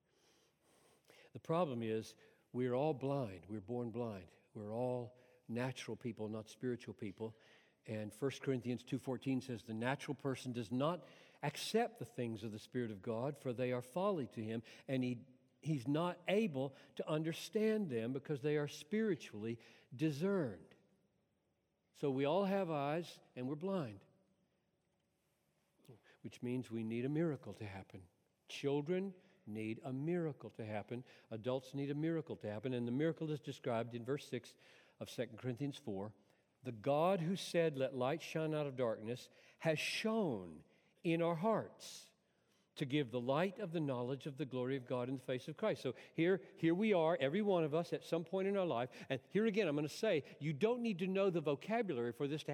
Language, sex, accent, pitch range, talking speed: English, male, American, 125-175 Hz, 180 wpm